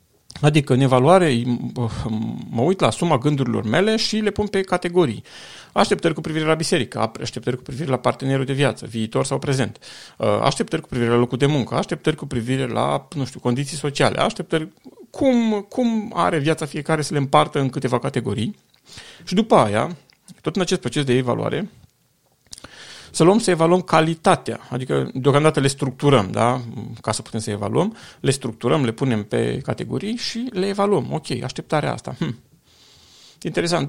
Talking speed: 165 wpm